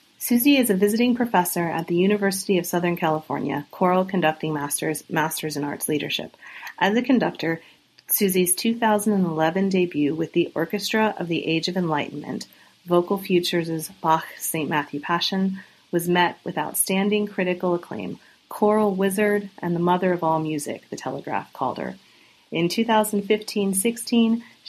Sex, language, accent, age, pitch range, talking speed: female, English, American, 40-59, 155-195 Hz, 140 wpm